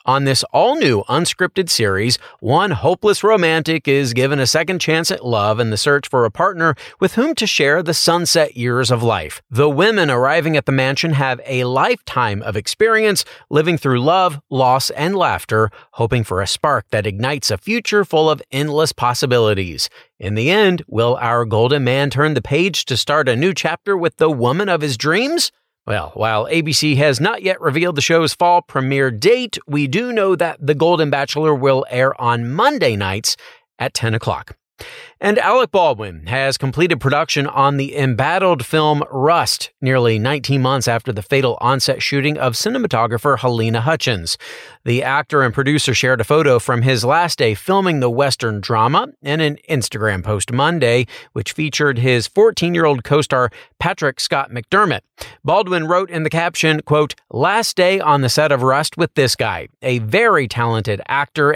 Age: 40-59